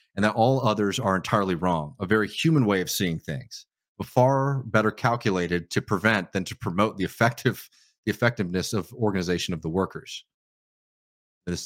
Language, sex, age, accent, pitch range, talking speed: English, male, 30-49, American, 90-115 Hz, 165 wpm